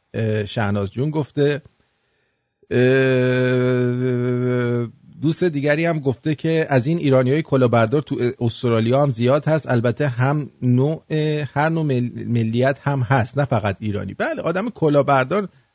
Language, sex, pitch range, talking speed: English, male, 110-140 Hz, 120 wpm